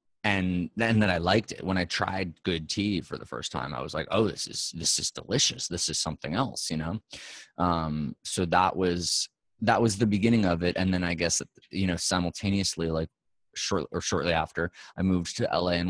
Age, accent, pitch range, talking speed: 20-39, American, 85-105 Hz, 220 wpm